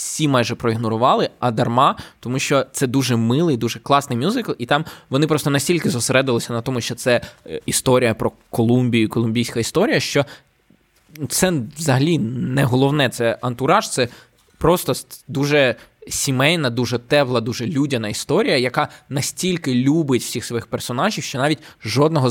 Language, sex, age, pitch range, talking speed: Ukrainian, male, 20-39, 120-145 Hz, 145 wpm